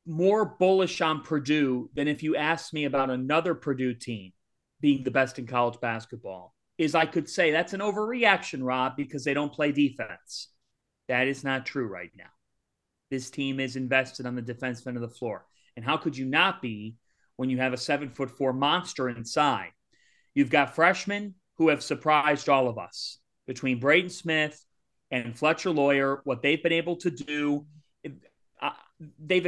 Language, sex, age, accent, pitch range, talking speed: English, male, 30-49, American, 130-175 Hz, 175 wpm